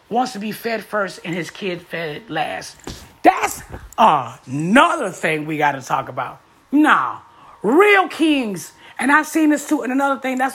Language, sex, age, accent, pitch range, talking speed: English, female, 30-49, American, 205-285 Hz, 170 wpm